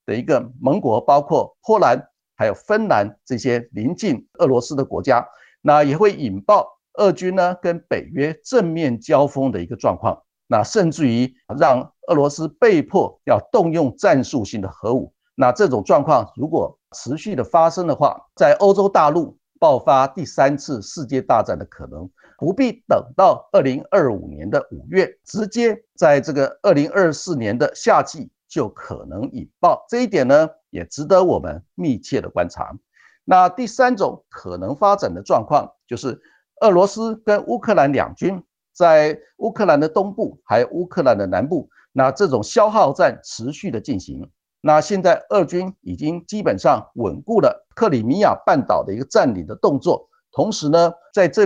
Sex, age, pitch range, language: male, 50-69, 145-215 Hz, Chinese